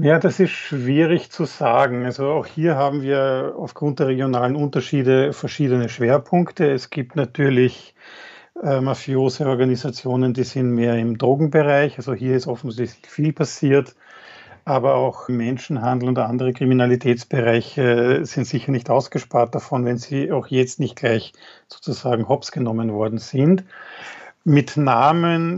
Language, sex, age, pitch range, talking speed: German, male, 50-69, 125-145 Hz, 130 wpm